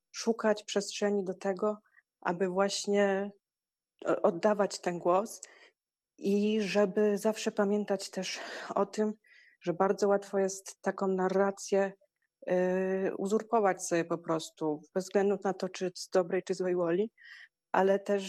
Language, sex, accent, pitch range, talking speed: Polish, female, native, 190-205 Hz, 125 wpm